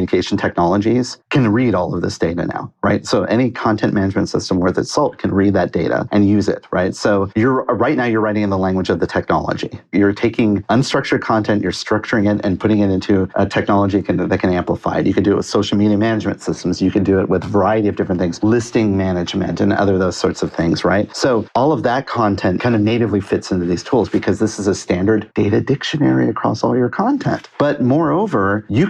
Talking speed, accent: 230 wpm, American